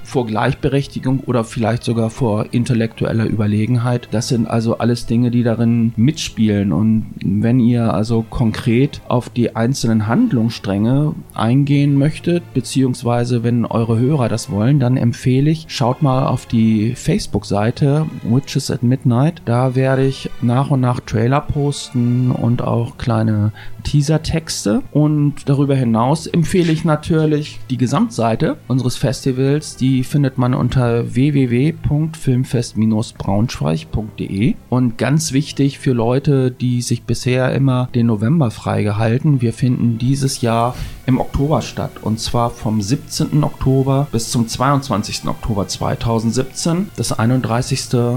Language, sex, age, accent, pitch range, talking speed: German, male, 30-49, German, 115-135 Hz, 125 wpm